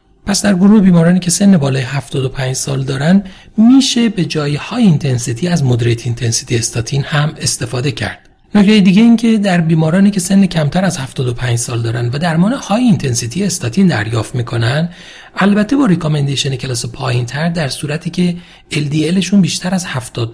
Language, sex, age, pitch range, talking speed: Persian, male, 40-59, 130-190 Hz, 155 wpm